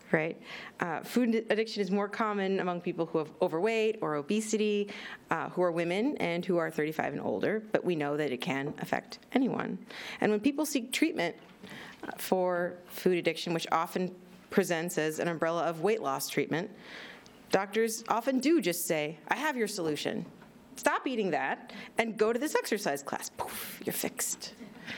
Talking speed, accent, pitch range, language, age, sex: 170 wpm, American, 175-230 Hz, English, 40-59, female